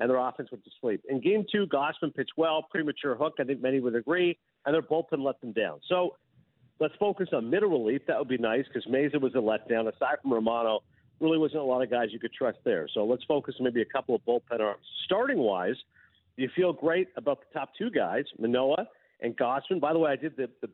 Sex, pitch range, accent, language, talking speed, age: male, 125-160 Hz, American, English, 235 wpm, 50-69